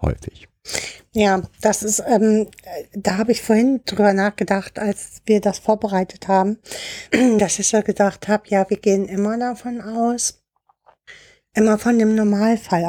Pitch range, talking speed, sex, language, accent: 200-235 Hz, 145 wpm, female, German, German